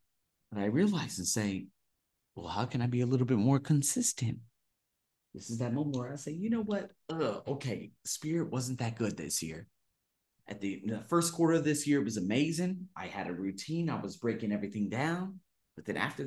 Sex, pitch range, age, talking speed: male, 110-165 Hz, 30-49, 205 wpm